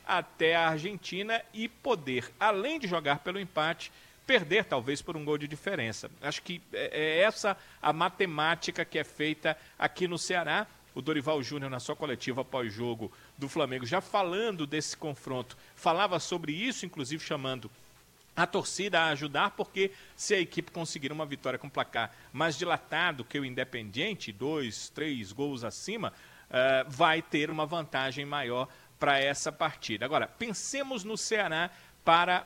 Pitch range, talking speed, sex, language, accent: 140-180 Hz, 150 wpm, male, Portuguese, Brazilian